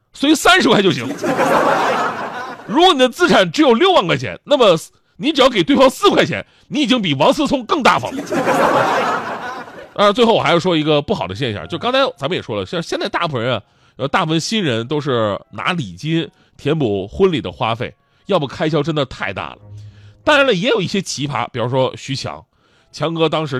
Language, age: Chinese, 30-49